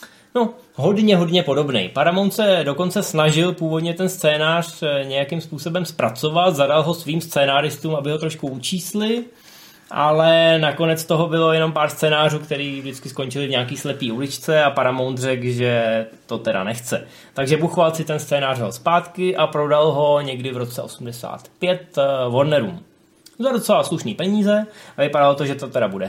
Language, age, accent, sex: Czech, 20-39, native, male